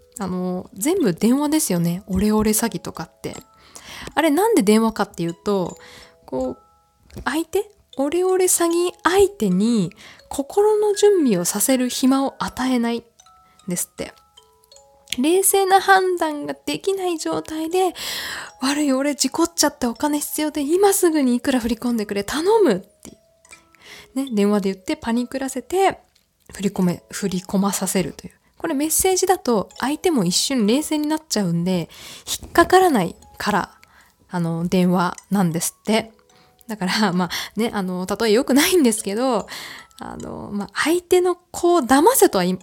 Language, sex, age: Japanese, female, 20-39